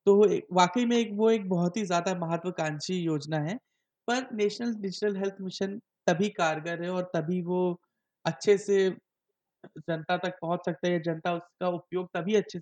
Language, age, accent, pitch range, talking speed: Hindi, 20-39, native, 160-185 Hz, 165 wpm